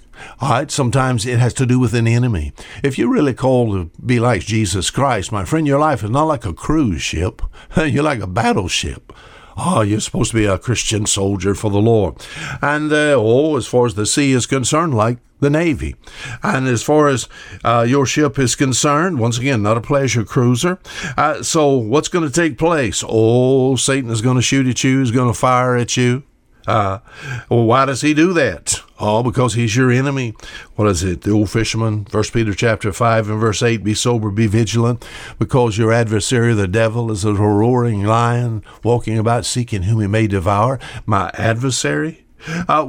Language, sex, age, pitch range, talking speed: English, male, 60-79, 110-130 Hz, 195 wpm